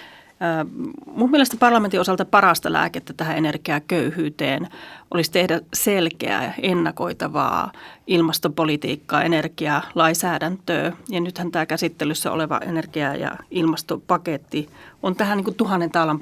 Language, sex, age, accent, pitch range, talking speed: Finnish, female, 30-49, native, 165-195 Hz, 100 wpm